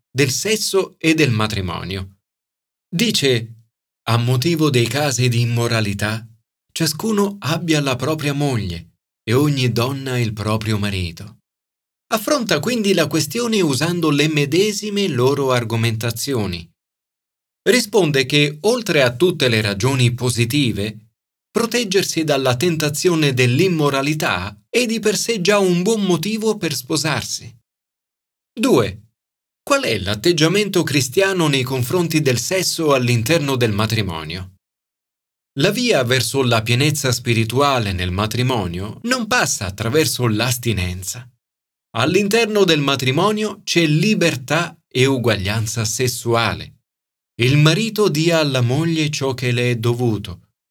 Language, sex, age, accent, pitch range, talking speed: Italian, male, 40-59, native, 115-170 Hz, 115 wpm